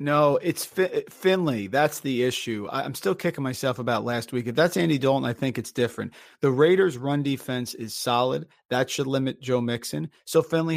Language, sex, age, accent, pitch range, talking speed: English, male, 40-59, American, 120-155 Hz, 190 wpm